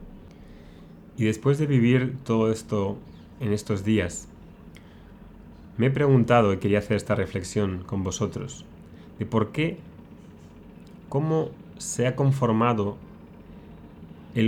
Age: 30-49